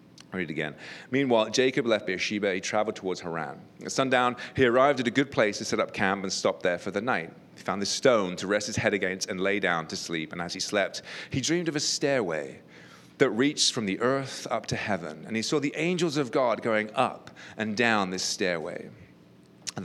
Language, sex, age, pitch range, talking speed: English, male, 30-49, 100-145 Hz, 225 wpm